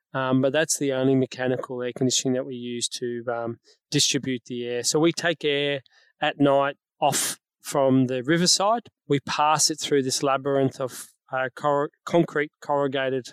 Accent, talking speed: Australian, 160 wpm